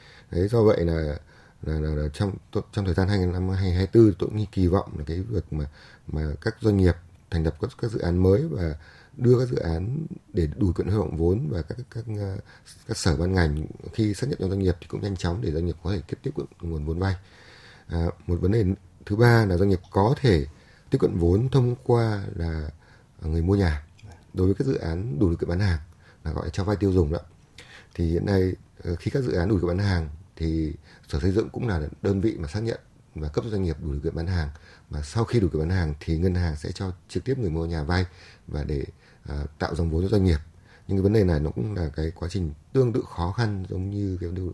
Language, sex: Vietnamese, male